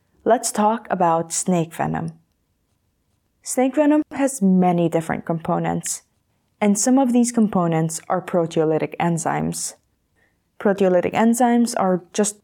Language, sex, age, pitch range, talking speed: English, female, 20-39, 165-210 Hz, 110 wpm